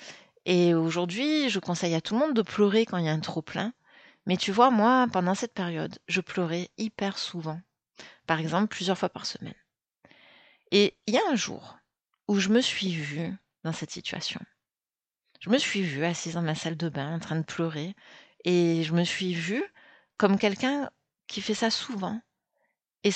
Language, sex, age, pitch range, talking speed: French, female, 30-49, 170-220 Hz, 190 wpm